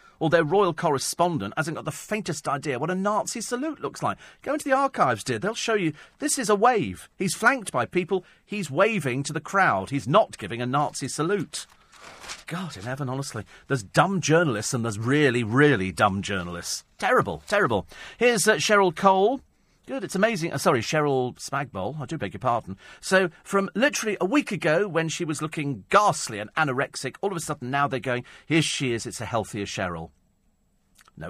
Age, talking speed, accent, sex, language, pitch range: 40-59, 195 wpm, British, male, English, 120-185 Hz